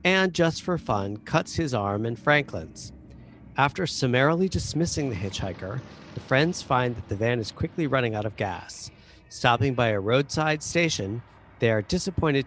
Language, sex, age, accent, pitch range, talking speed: English, male, 40-59, American, 105-140 Hz, 165 wpm